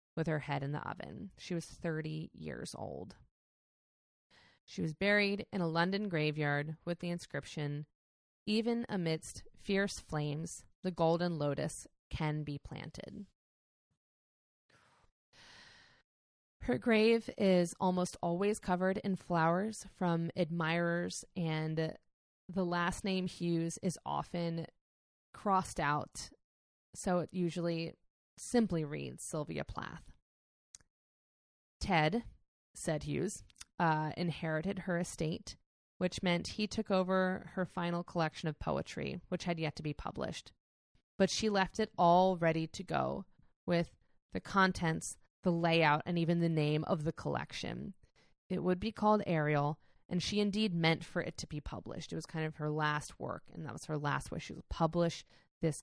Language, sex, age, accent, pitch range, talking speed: English, female, 20-39, American, 155-185 Hz, 140 wpm